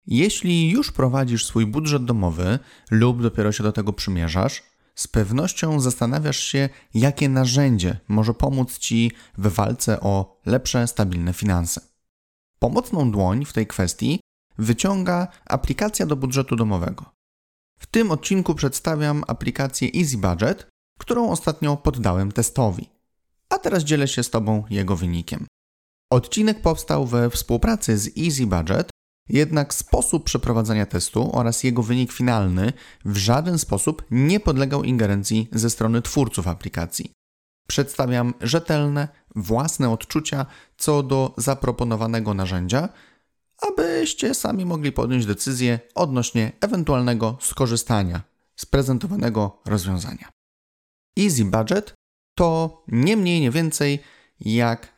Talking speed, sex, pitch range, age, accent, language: 120 wpm, male, 110-150 Hz, 30-49, native, Polish